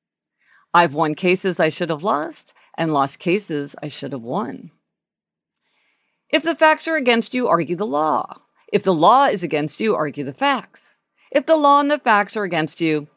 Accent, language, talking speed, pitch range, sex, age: American, English, 185 wpm, 160-230 Hz, female, 50-69